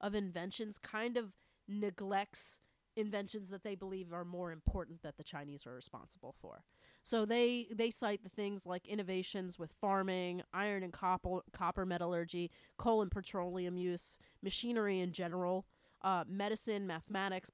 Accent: American